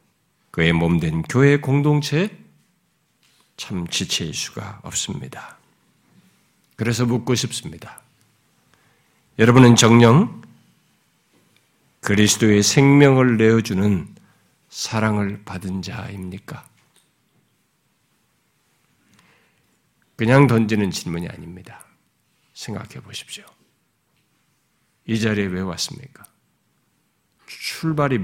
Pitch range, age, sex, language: 100-130 Hz, 50-69, male, Korean